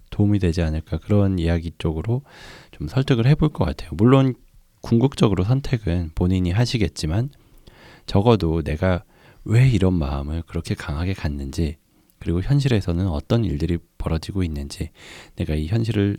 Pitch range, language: 85-115 Hz, Korean